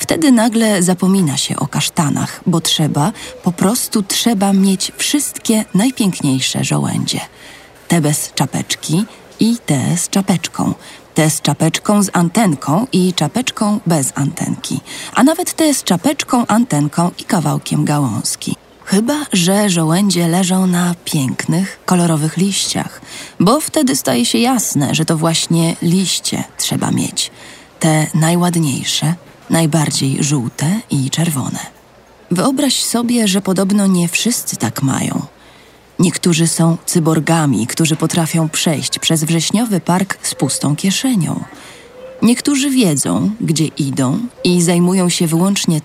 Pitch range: 160-215 Hz